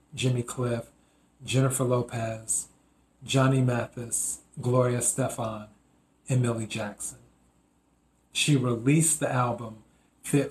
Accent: American